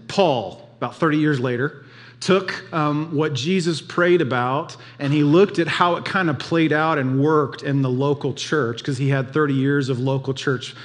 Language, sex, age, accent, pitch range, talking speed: English, male, 40-59, American, 135-165 Hz, 195 wpm